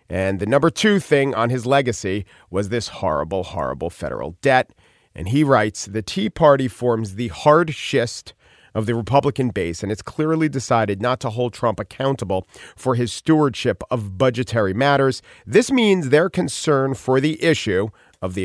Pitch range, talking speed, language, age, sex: 100-145 Hz, 170 wpm, English, 40-59, male